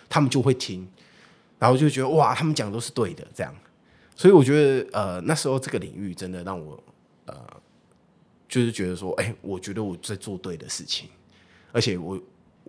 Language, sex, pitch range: Chinese, male, 95-135 Hz